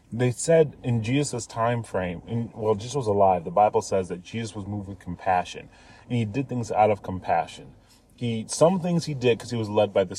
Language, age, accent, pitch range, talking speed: English, 30-49, American, 100-130 Hz, 225 wpm